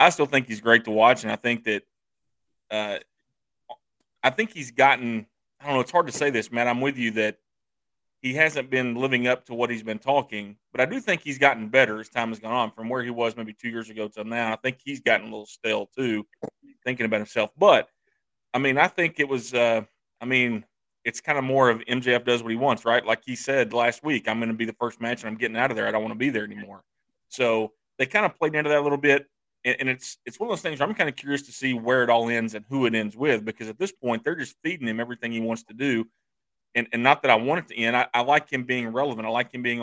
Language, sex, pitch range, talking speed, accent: English, male, 115-140 Hz, 275 wpm, American